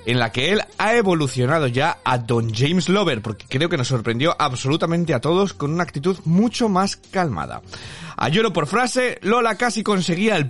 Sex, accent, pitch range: male, Spanish, 125-190 Hz